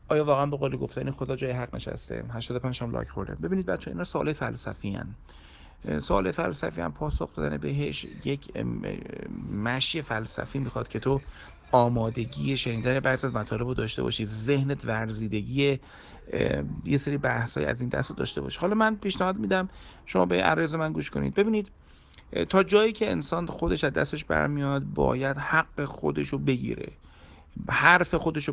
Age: 40-59